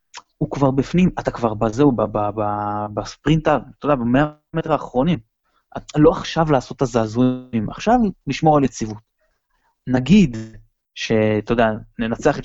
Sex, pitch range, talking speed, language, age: male, 115-155 Hz, 140 wpm, Hebrew, 20-39